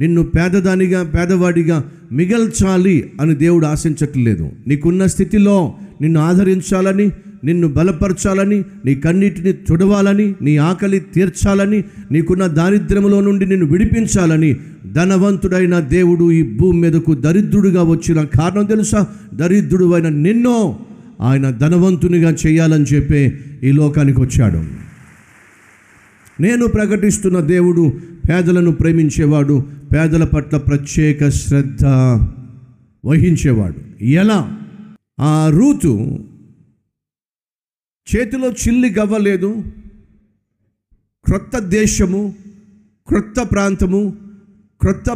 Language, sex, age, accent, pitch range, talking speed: Telugu, male, 50-69, native, 150-200 Hz, 85 wpm